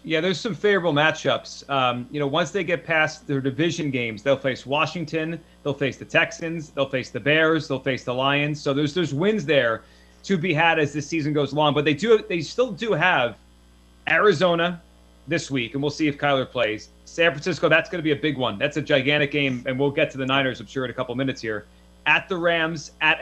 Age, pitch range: 30-49, 130-175 Hz